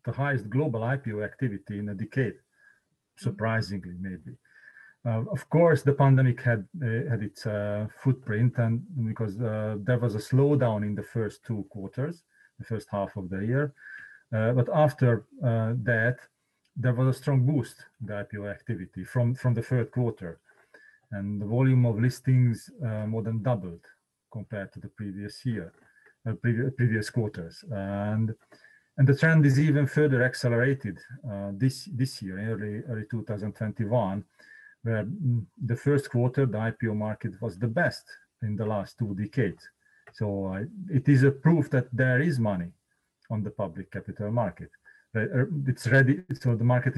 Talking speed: 160 wpm